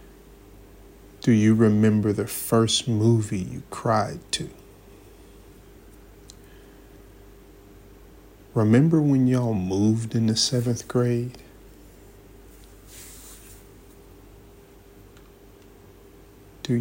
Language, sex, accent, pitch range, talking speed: English, male, American, 100-120 Hz, 65 wpm